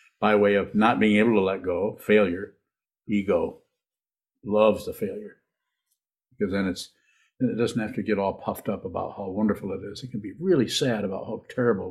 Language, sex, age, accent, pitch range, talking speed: English, male, 50-69, American, 100-130 Hz, 185 wpm